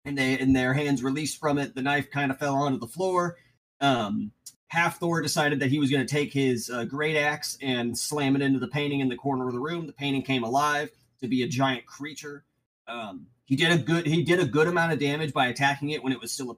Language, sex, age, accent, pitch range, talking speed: English, male, 30-49, American, 130-155 Hz, 255 wpm